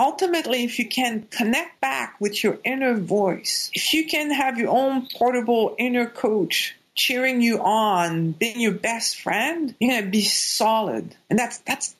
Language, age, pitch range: English, 50-69, 195-245 Hz